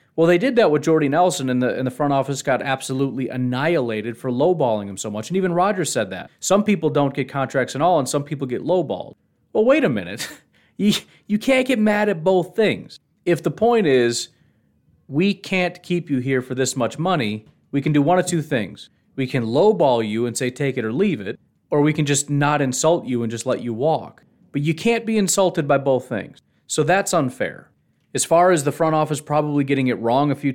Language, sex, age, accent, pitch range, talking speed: English, male, 30-49, American, 130-165 Hz, 225 wpm